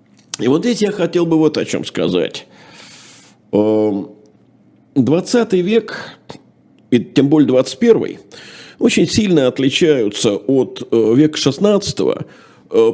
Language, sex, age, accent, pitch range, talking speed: Russian, male, 50-69, native, 125-170 Hz, 100 wpm